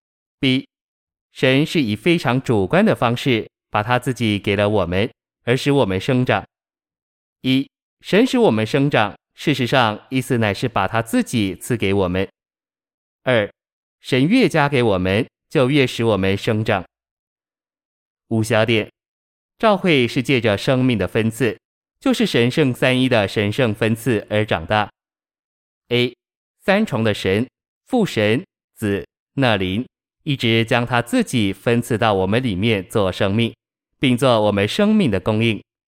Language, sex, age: Chinese, male, 30-49